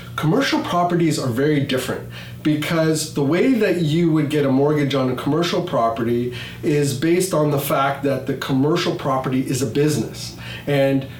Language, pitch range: English, 120-150 Hz